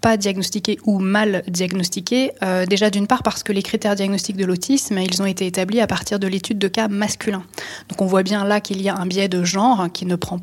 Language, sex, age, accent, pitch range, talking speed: French, female, 20-39, French, 185-220 Hz, 240 wpm